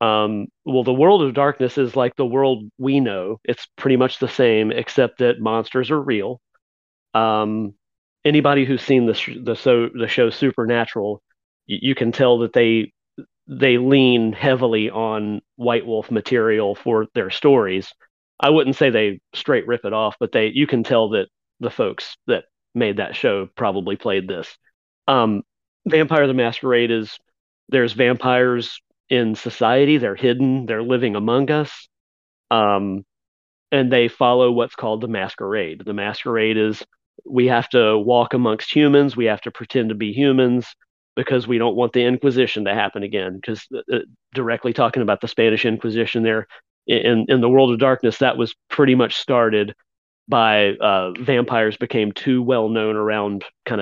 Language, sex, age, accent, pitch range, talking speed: English, male, 40-59, American, 110-130 Hz, 165 wpm